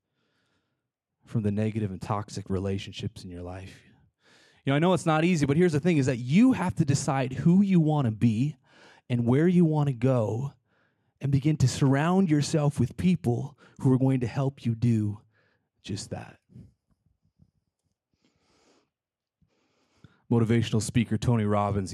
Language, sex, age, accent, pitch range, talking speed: English, male, 30-49, American, 115-155 Hz, 155 wpm